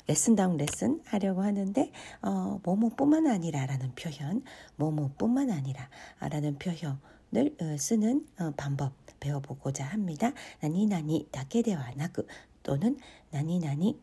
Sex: female